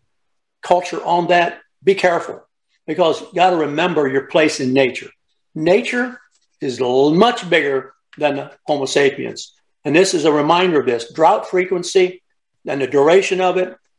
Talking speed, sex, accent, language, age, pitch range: 155 wpm, male, American, English, 60-79, 150-195 Hz